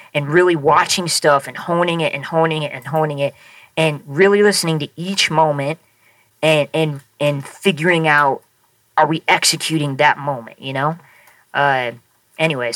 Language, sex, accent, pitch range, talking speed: English, female, American, 140-165 Hz, 155 wpm